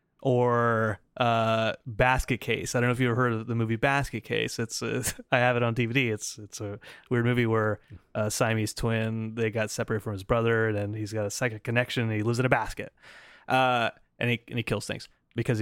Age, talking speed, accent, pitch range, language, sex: 20-39, 225 wpm, American, 110-135 Hz, English, male